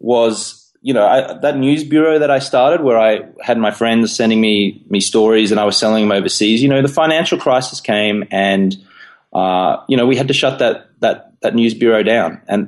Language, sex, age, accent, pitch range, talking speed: English, male, 20-39, Australian, 105-130 Hz, 220 wpm